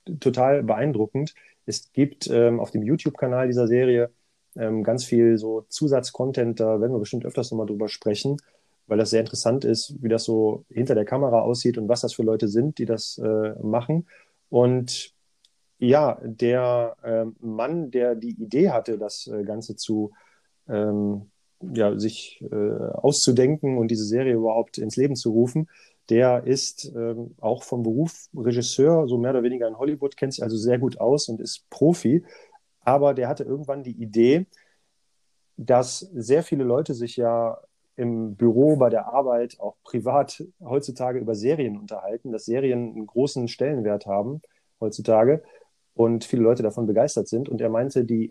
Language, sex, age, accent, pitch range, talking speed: German, male, 30-49, German, 110-135 Hz, 160 wpm